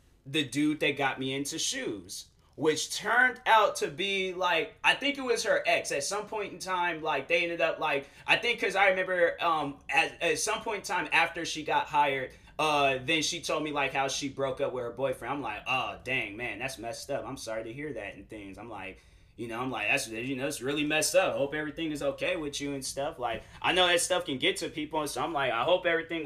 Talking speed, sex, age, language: 250 wpm, male, 20-39, English